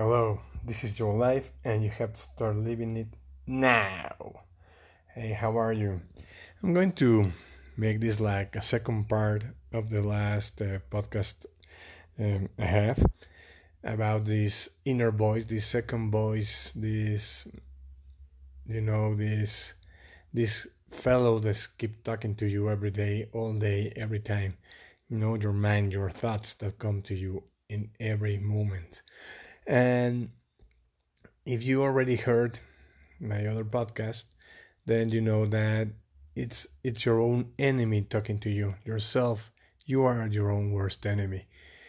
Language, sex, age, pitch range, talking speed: English, male, 30-49, 100-115 Hz, 140 wpm